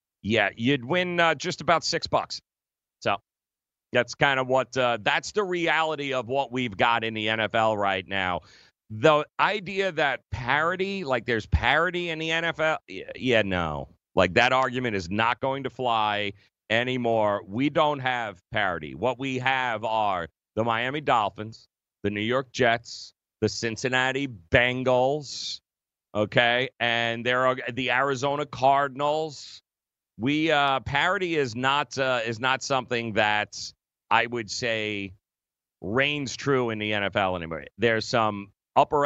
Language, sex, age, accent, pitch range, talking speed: English, male, 40-59, American, 110-140 Hz, 145 wpm